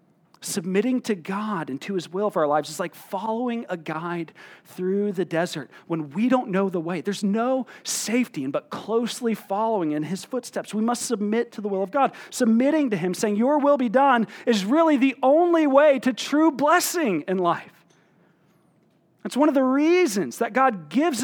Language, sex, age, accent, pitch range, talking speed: English, male, 40-59, American, 160-240 Hz, 190 wpm